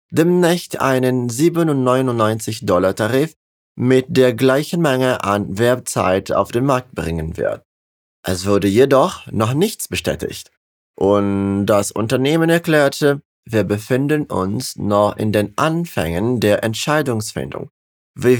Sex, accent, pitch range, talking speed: male, German, 100-140 Hz, 115 wpm